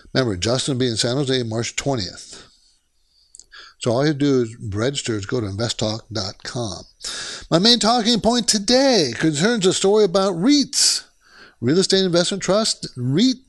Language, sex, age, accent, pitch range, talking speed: English, male, 60-79, American, 125-190 Hz, 160 wpm